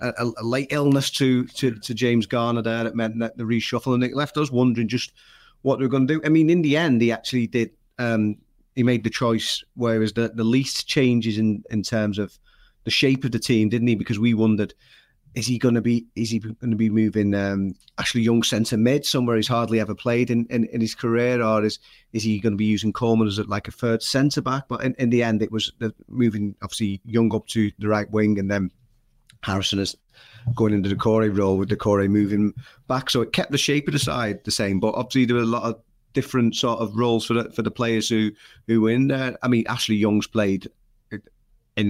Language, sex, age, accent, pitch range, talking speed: English, male, 30-49, British, 105-125 Hz, 240 wpm